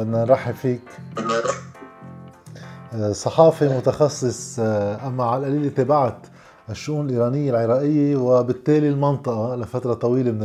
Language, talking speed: Arabic, 90 wpm